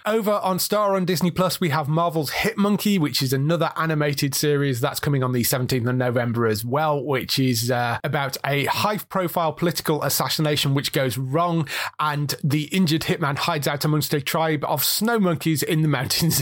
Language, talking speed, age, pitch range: English, 190 wpm, 30-49, 130-165 Hz